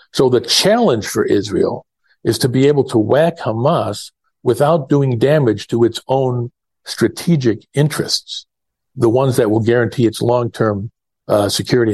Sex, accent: male, American